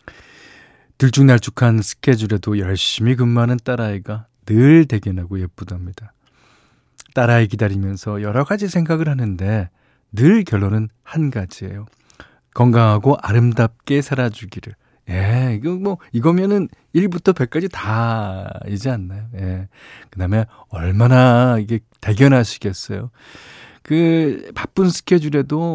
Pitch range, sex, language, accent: 105-140 Hz, male, Korean, native